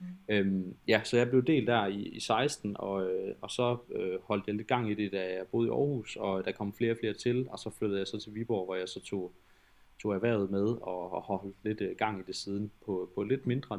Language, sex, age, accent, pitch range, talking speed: Danish, male, 20-39, native, 95-115 Hz, 260 wpm